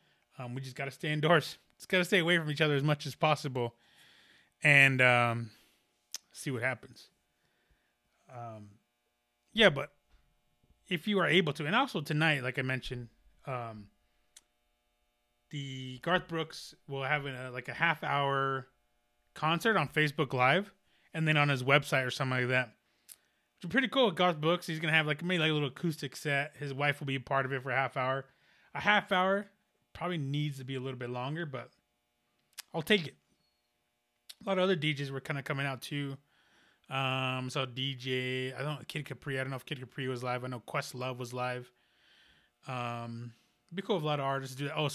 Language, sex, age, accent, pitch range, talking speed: English, male, 20-39, American, 120-155 Hz, 200 wpm